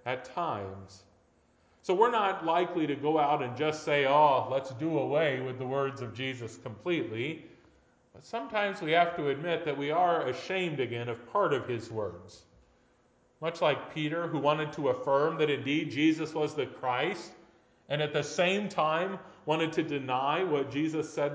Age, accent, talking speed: 40-59, American, 175 wpm